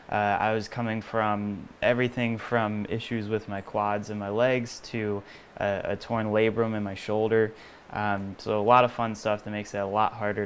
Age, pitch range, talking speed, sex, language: 20-39, 105-115 Hz, 200 wpm, male, English